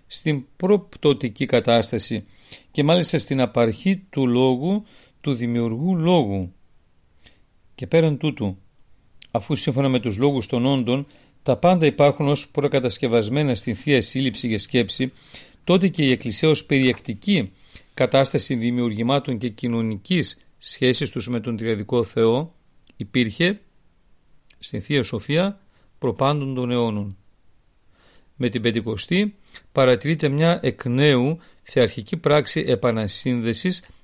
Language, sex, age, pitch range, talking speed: Greek, male, 50-69, 115-145 Hz, 115 wpm